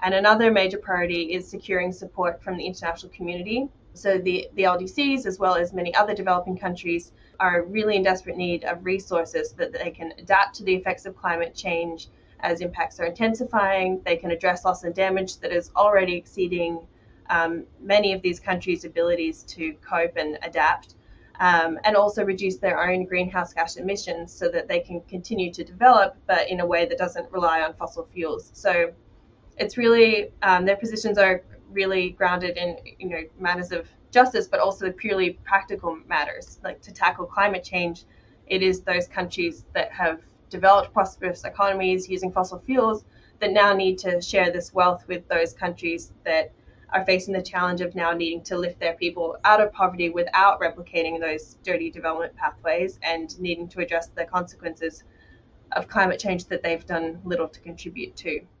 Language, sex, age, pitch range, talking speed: English, female, 20-39, 170-195 Hz, 180 wpm